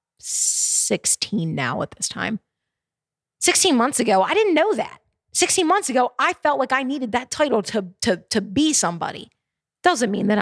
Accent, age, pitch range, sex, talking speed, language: American, 30-49, 220-320 Hz, female, 175 wpm, English